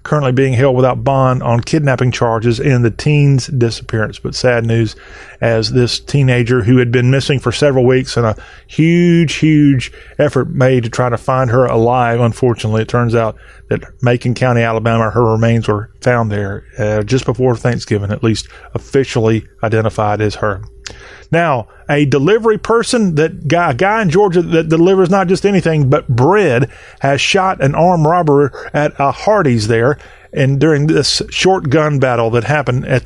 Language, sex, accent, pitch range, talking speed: English, male, American, 120-150 Hz, 170 wpm